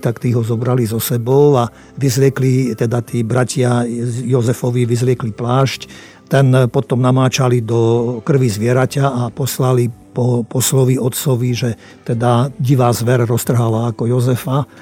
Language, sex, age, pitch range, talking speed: Slovak, male, 50-69, 120-140 Hz, 130 wpm